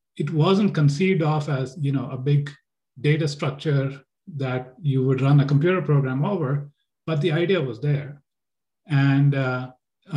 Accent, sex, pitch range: Indian, male, 130-150 Hz